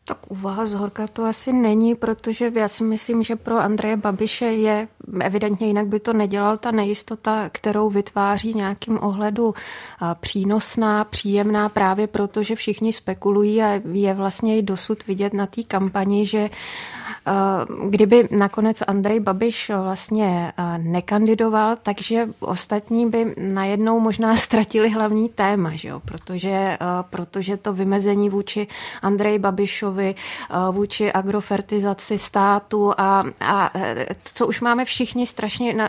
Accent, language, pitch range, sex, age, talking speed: native, Czech, 200-225 Hz, female, 30-49, 130 wpm